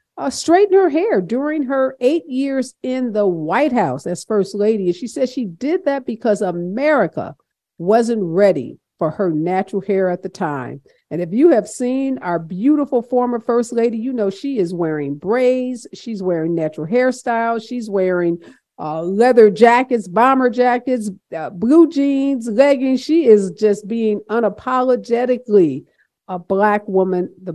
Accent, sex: American, female